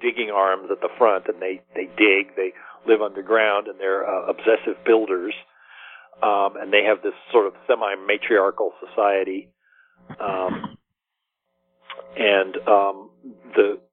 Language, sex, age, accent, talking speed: English, male, 50-69, American, 130 wpm